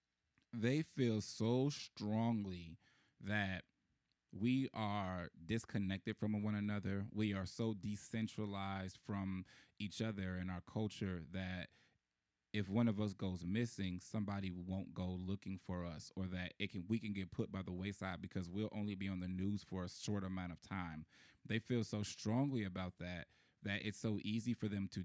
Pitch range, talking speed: 95-110 Hz, 170 wpm